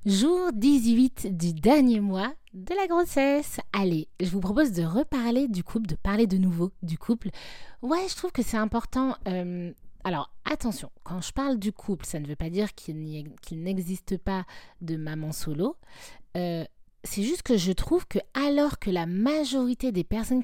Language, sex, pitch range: French, female, 185-255 Hz